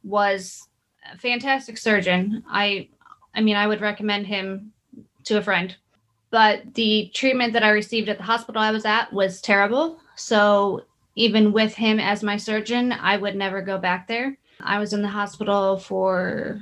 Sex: female